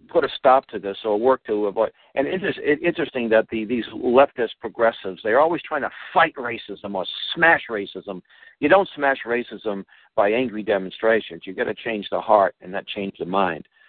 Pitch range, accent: 100-120 Hz, American